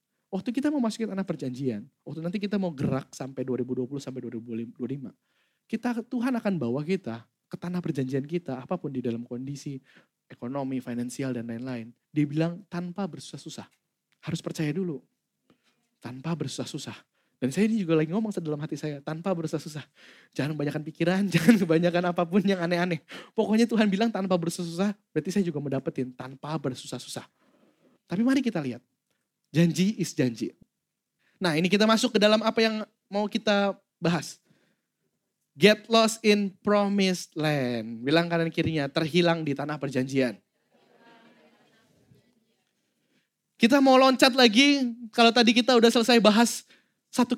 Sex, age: male, 20-39